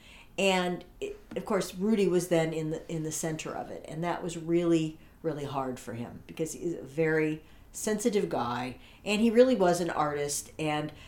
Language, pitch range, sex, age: English, 155-215 Hz, female, 50-69